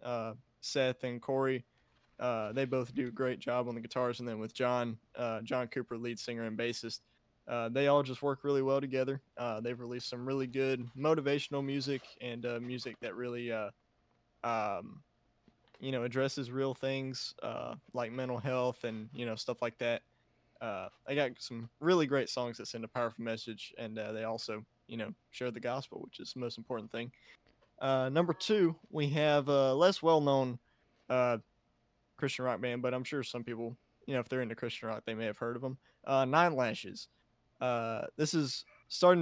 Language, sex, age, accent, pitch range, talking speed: English, male, 20-39, American, 120-135 Hz, 195 wpm